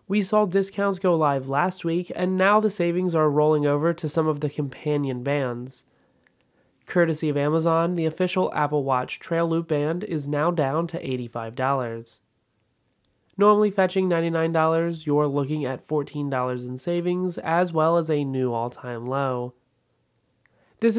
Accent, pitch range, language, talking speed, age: American, 140-180 Hz, English, 150 wpm, 20-39